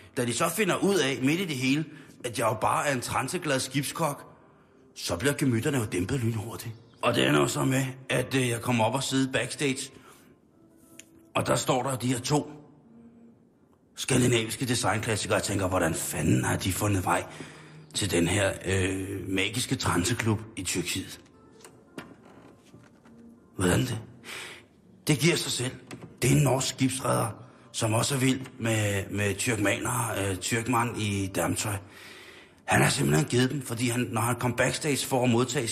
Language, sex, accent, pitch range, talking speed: Danish, male, native, 110-130 Hz, 165 wpm